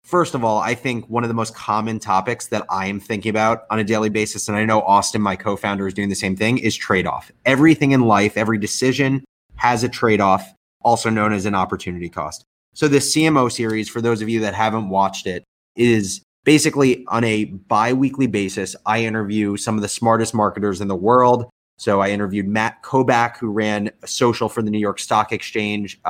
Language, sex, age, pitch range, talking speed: English, male, 30-49, 105-125 Hz, 205 wpm